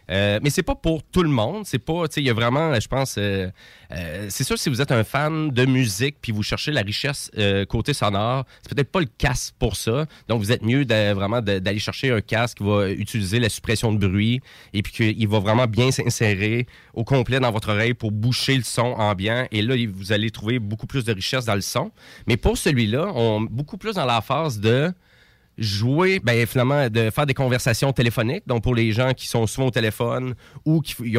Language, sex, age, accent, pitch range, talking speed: French, male, 30-49, Canadian, 110-135 Hz, 235 wpm